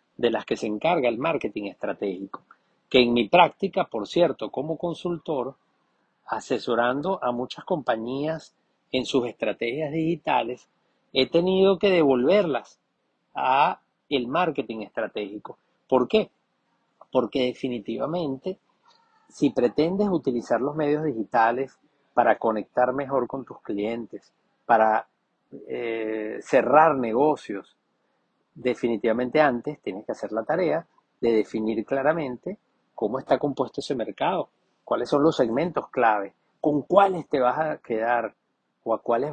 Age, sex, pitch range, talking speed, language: 40-59, male, 120-160 Hz, 120 wpm, Spanish